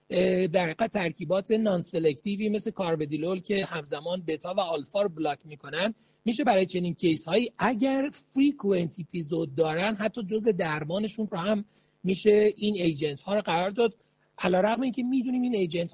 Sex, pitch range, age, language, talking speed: male, 175-220 Hz, 40-59, Persian, 150 wpm